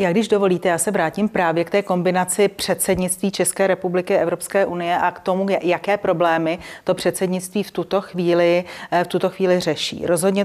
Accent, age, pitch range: native, 30-49, 165-190 Hz